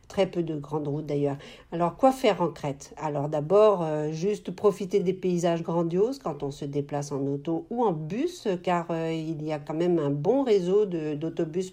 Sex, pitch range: female, 155-205 Hz